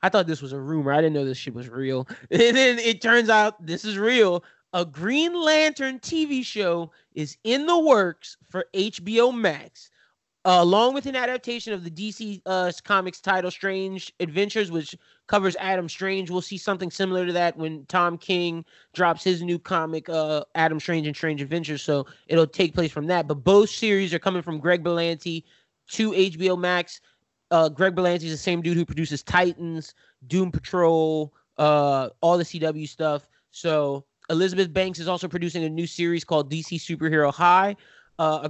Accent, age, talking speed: American, 20-39, 185 wpm